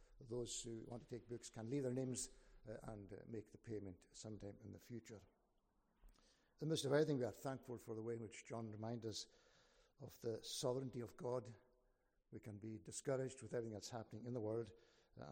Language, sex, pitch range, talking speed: English, male, 105-125 Hz, 210 wpm